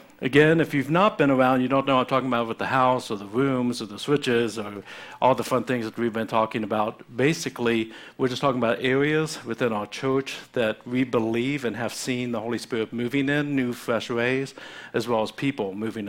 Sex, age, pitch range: male, 50-69, 115-135 Hz